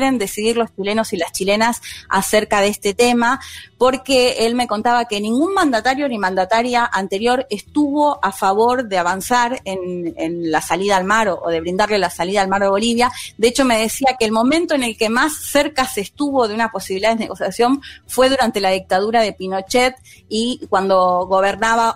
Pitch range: 195-250 Hz